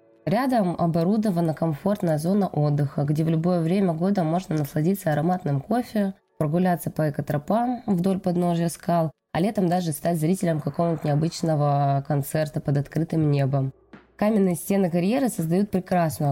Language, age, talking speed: Russian, 20-39, 130 wpm